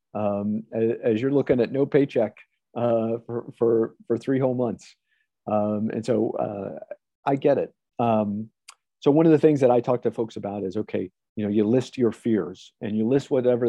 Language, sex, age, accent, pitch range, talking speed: English, male, 40-59, American, 110-125 Hz, 195 wpm